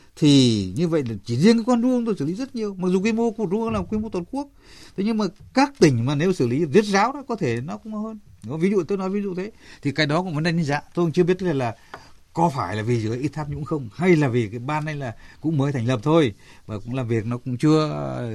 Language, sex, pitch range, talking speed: Vietnamese, male, 100-150 Hz, 300 wpm